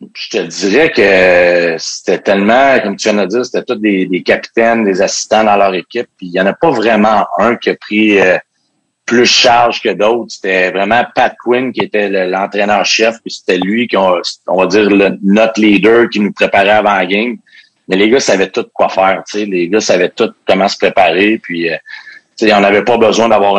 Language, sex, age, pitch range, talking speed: English, male, 40-59, 95-110 Hz, 215 wpm